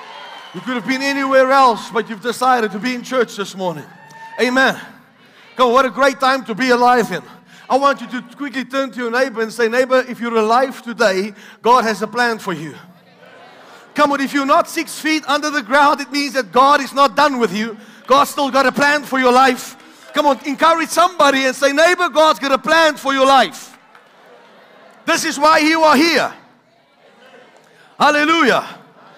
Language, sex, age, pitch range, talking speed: English, male, 40-59, 215-270 Hz, 195 wpm